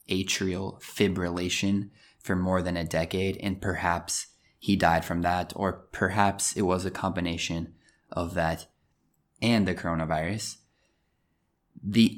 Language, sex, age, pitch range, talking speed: Italian, male, 20-39, 85-105 Hz, 125 wpm